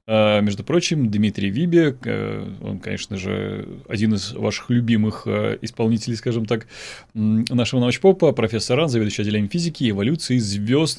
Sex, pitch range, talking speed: male, 105-125 Hz, 130 wpm